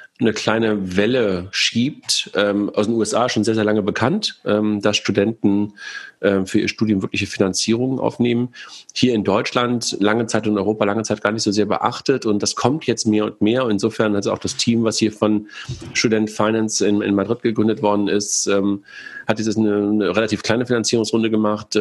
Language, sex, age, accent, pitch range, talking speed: German, male, 40-59, German, 100-115 Hz, 200 wpm